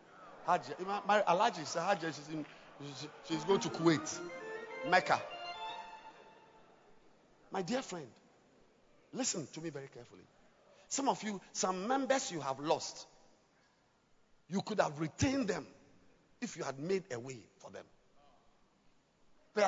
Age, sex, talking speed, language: 50-69, male, 110 wpm, English